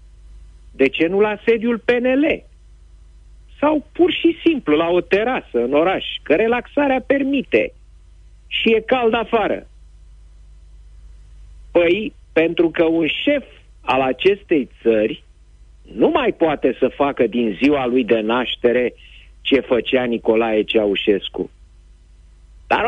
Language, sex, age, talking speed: Romanian, male, 50-69, 120 wpm